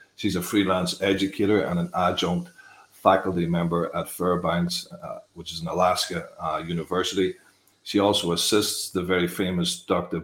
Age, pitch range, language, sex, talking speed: 40-59, 90-100 Hz, English, male, 145 wpm